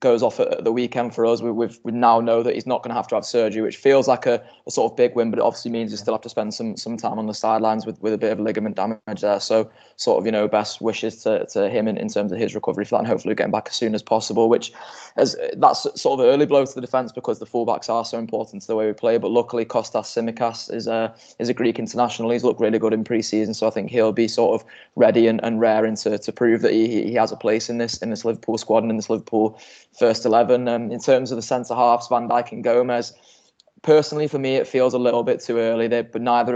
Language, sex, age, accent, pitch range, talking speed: English, male, 20-39, British, 110-120 Hz, 280 wpm